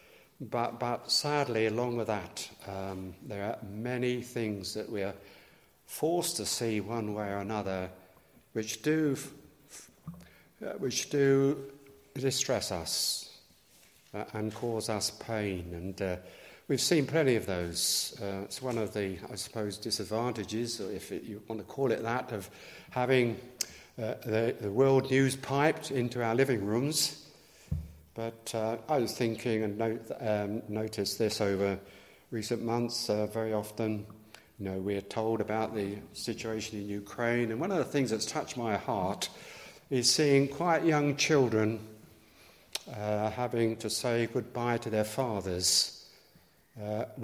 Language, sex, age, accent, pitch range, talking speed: English, male, 50-69, British, 105-125 Hz, 145 wpm